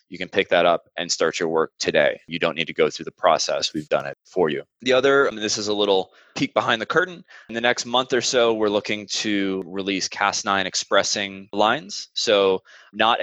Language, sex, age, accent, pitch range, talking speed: English, male, 20-39, American, 90-115 Hz, 220 wpm